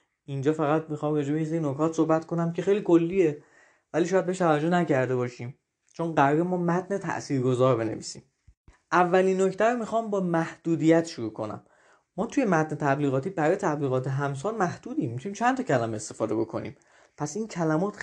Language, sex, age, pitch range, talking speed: Persian, male, 20-39, 140-185 Hz, 160 wpm